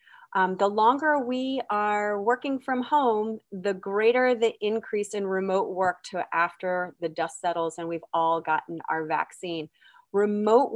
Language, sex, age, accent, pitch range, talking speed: English, female, 30-49, American, 185-225 Hz, 150 wpm